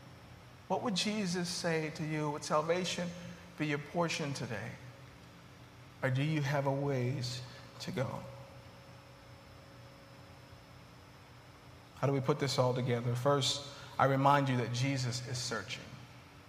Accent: American